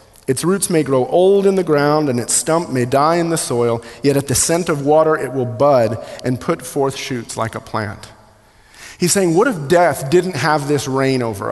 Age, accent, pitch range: 40-59, American, 145-195 Hz